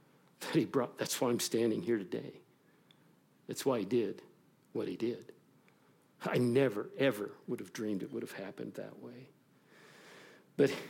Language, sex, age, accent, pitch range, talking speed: English, male, 50-69, American, 125-145 Hz, 160 wpm